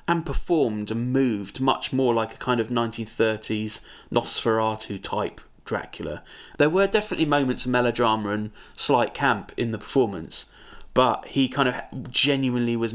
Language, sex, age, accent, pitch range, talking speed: English, male, 30-49, British, 115-140 Hz, 150 wpm